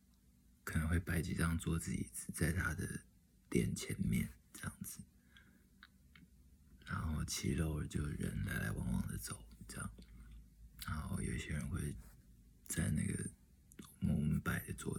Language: Chinese